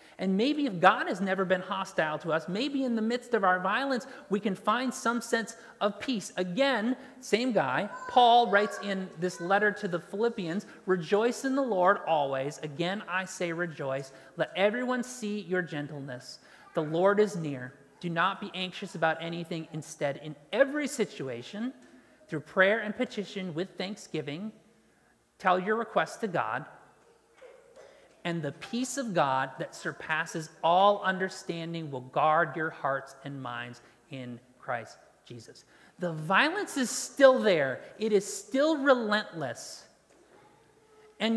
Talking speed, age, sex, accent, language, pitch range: 150 wpm, 30-49, male, American, English, 165-230 Hz